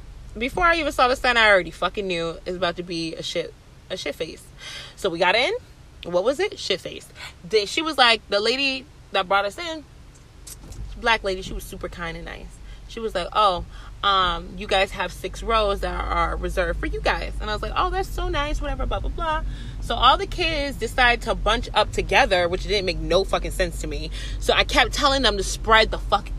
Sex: female